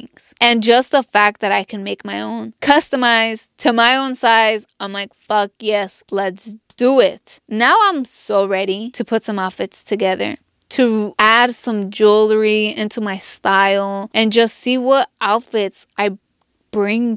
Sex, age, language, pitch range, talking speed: female, 20-39, English, 205-245 Hz, 155 wpm